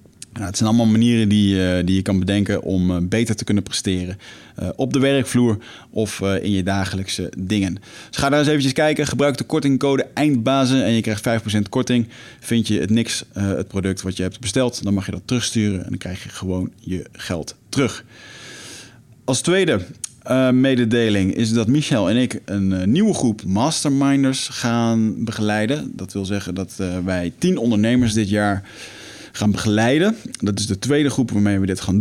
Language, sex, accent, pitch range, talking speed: Dutch, male, Dutch, 100-125 Hz, 195 wpm